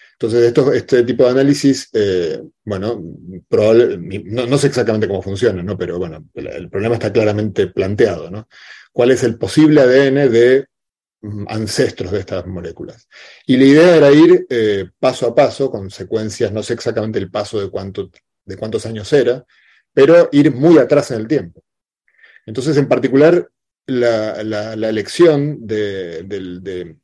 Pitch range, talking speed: 105-135 Hz, 160 wpm